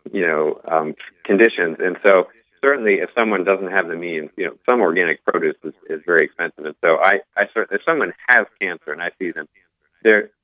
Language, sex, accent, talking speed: English, male, American, 200 wpm